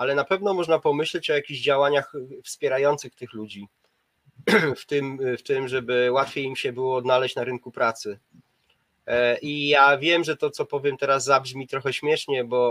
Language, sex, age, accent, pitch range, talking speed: Polish, male, 30-49, native, 125-145 Hz, 165 wpm